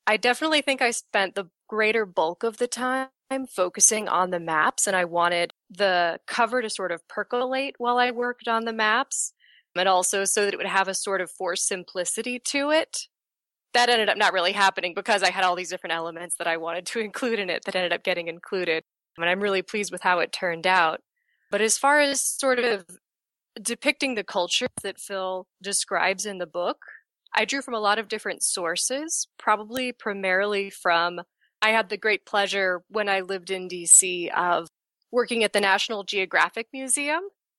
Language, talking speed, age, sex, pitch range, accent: English, 195 wpm, 20-39, female, 185-235 Hz, American